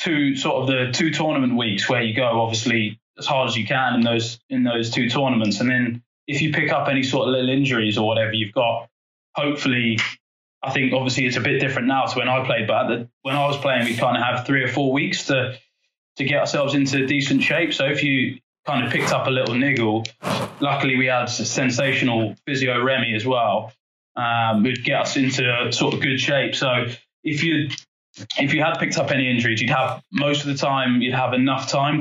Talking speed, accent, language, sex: 225 wpm, British, English, male